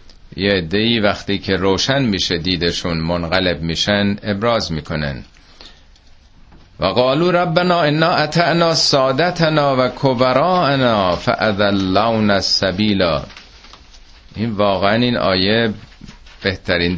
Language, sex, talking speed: Persian, male, 90 wpm